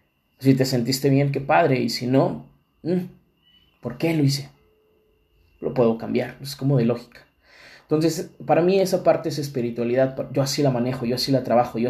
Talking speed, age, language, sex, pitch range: 180 wpm, 20-39, Spanish, male, 120-140 Hz